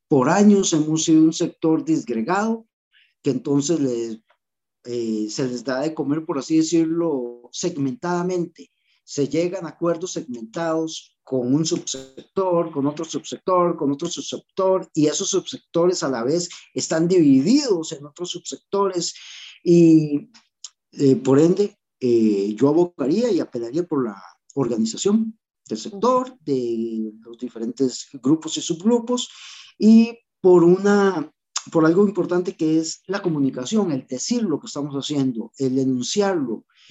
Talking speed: 135 wpm